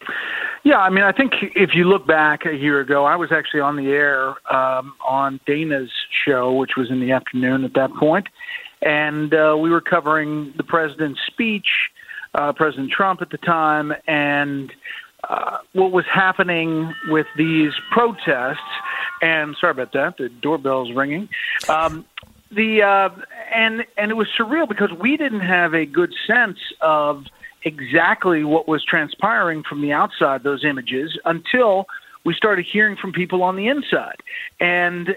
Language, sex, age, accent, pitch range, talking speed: English, male, 40-59, American, 150-195 Hz, 160 wpm